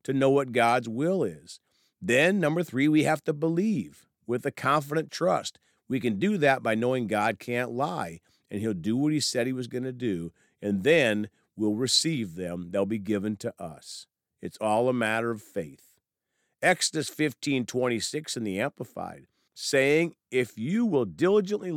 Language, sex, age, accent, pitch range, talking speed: English, male, 50-69, American, 110-155 Hz, 175 wpm